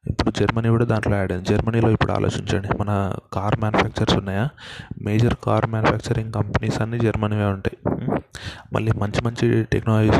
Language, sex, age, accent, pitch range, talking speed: Telugu, male, 20-39, native, 100-115 Hz, 140 wpm